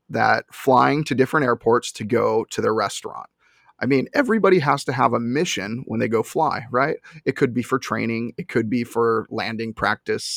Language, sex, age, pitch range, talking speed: English, male, 30-49, 115-140 Hz, 195 wpm